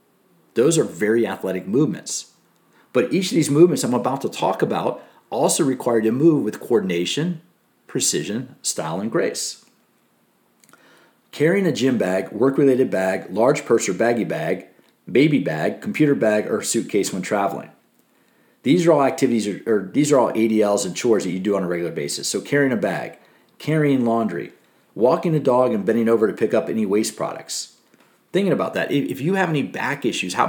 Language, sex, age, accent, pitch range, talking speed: English, male, 50-69, American, 115-160 Hz, 180 wpm